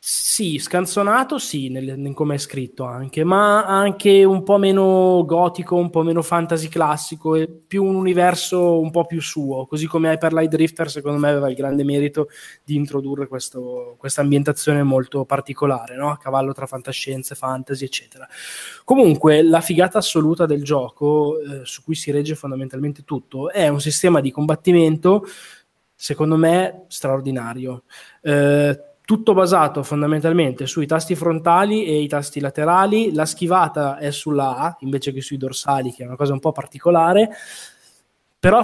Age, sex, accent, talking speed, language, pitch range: 20-39, male, native, 155 wpm, Italian, 140-175 Hz